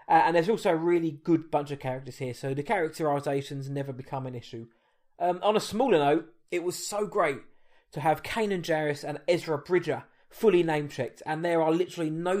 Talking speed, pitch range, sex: 200 wpm, 140-175 Hz, male